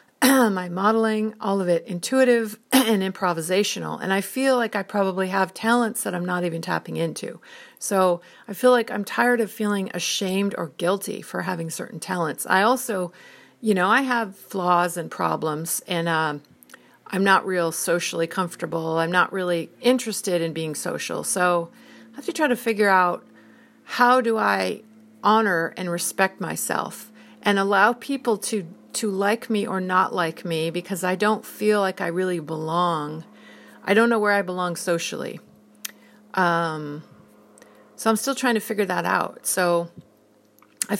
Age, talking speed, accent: 50-69, 165 wpm, American